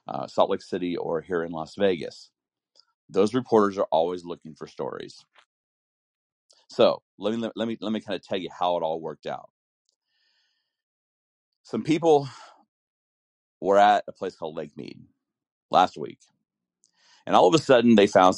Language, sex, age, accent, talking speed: English, male, 40-59, American, 165 wpm